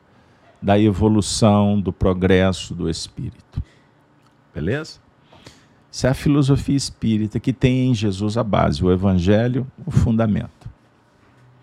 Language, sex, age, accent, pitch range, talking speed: Portuguese, male, 50-69, Brazilian, 100-140 Hz, 115 wpm